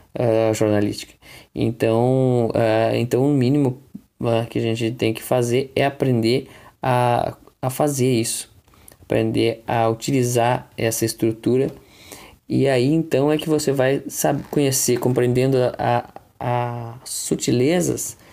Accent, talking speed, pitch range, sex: Brazilian, 120 wpm, 115-145 Hz, male